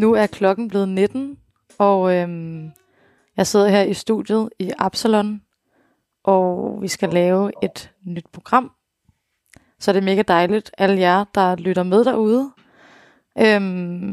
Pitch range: 180-215 Hz